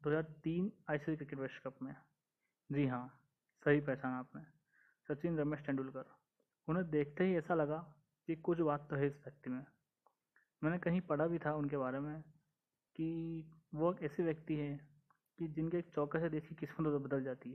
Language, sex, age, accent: Hindi, male, 20-39, native